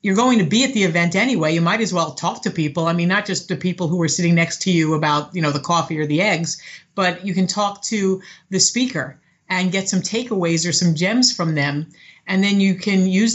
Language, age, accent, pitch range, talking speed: English, 50-69, American, 165-195 Hz, 250 wpm